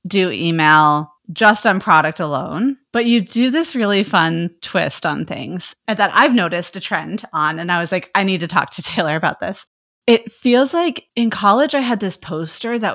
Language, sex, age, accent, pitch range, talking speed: English, female, 30-49, American, 160-215 Hz, 200 wpm